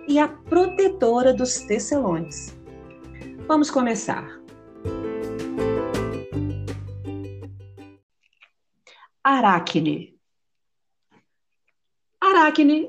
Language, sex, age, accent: Portuguese, female, 50-69, Brazilian